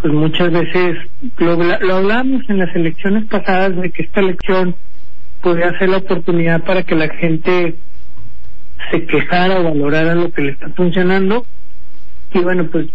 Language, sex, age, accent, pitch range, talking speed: Spanish, male, 50-69, Mexican, 160-185 Hz, 160 wpm